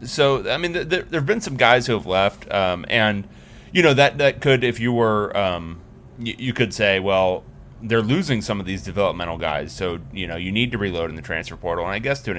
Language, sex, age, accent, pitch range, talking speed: English, male, 30-49, American, 90-115 Hz, 250 wpm